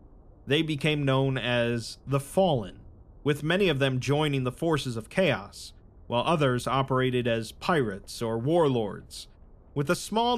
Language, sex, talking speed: English, male, 145 wpm